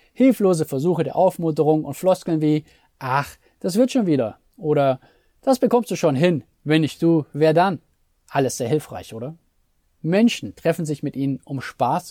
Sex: male